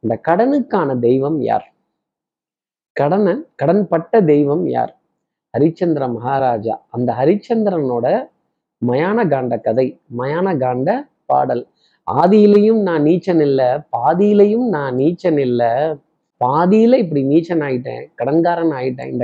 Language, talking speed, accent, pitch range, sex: Tamil, 105 wpm, native, 135-190 Hz, male